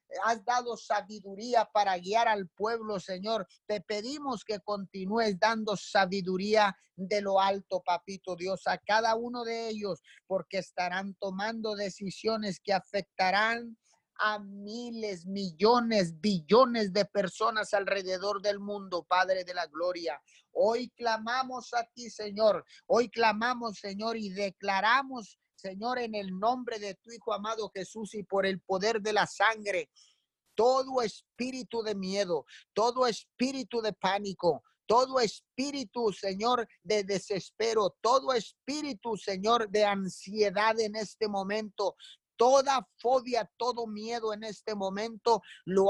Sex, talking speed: male, 130 wpm